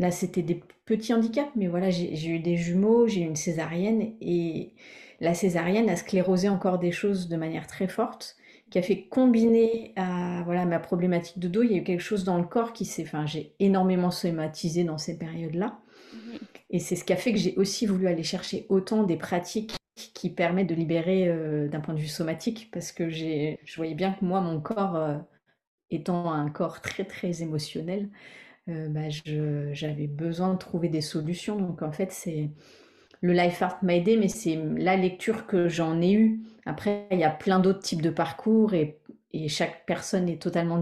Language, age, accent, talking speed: French, 30-49, French, 205 wpm